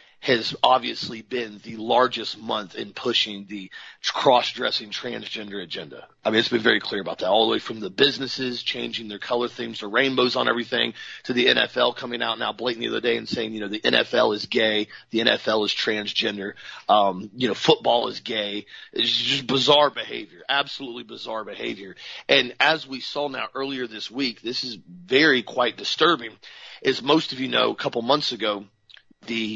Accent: American